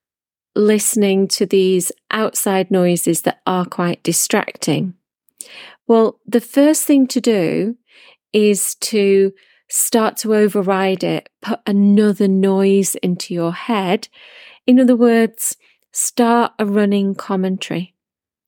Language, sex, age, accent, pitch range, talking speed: English, female, 30-49, British, 190-230 Hz, 110 wpm